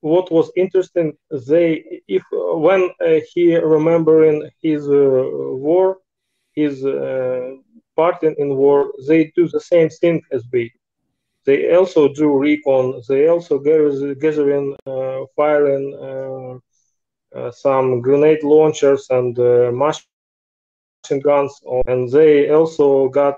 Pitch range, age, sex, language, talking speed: 135-165 Hz, 30-49, male, English, 125 wpm